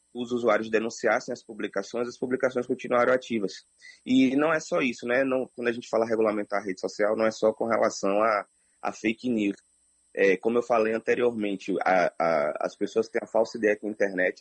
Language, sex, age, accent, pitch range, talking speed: Portuguese, male, 20-39, Brazilian, 90-120 Hz, 205 wpm